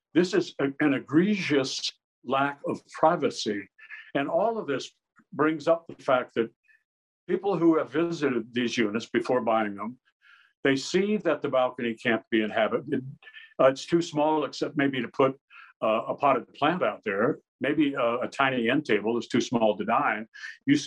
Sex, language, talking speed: male, English, 175 wpm